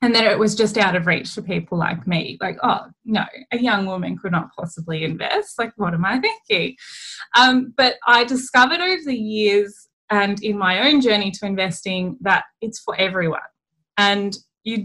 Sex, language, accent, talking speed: female, English, Australian, 190 wpm